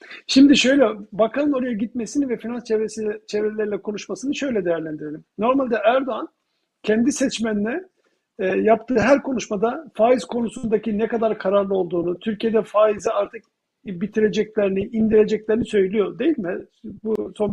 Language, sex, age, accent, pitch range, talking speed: Turkish, male, 50-69, native, 205-245 Hz, 125 wpm